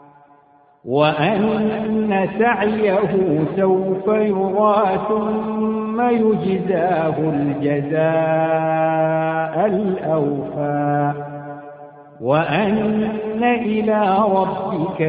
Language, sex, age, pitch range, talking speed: Arabic, male, 60-79, 145-195 Hz, 45 wpm